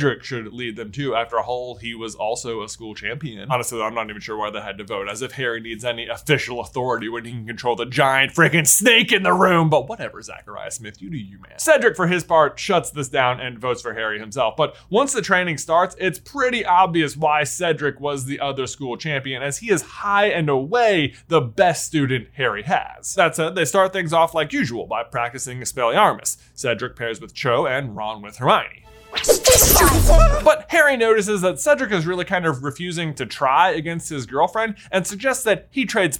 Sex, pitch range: male, 125-180 Hz